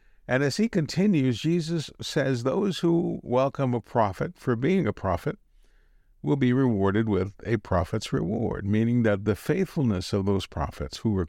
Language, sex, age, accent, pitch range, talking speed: English, male, 60-79, American, 90-125 Hz, 165 wpm